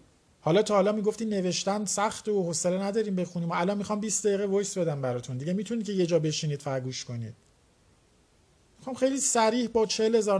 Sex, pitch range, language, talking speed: male, 170-225 Hz, Persian, 180 wpm